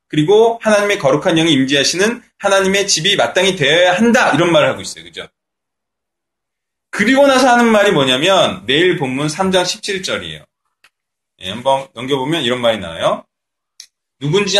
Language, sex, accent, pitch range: Korean, male, native, 150-200 Hz